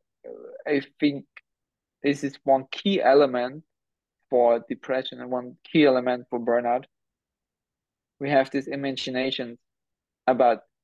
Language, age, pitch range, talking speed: English, 20-39, 125-145 Hz, 110 wpm